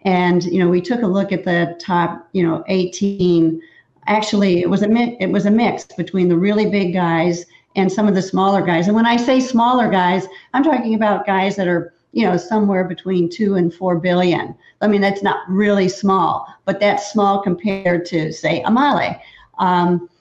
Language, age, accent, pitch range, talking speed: English, 50-69, American, 175-205 Hz, 200 wpm